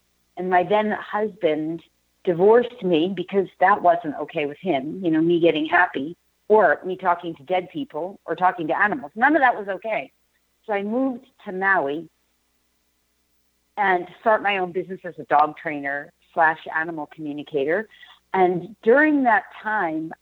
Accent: American